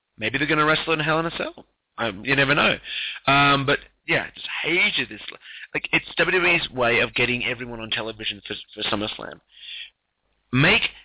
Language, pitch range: English, 110-150 Hz